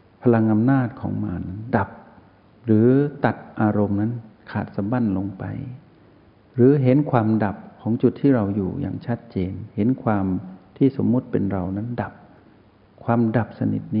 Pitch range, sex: 100-120 Hz, male